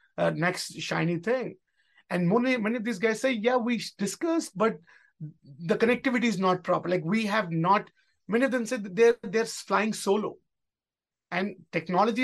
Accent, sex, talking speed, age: Indian, male, 165 wpm, 30-49